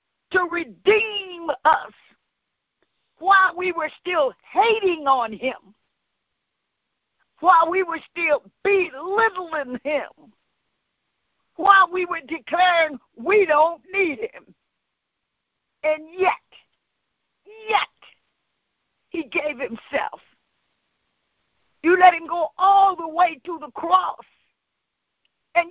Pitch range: 285-365 Hz